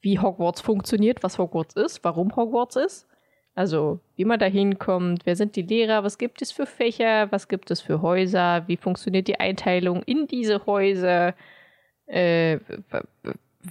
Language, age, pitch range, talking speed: German, 20-39, 175-220 Hz, 160 wpm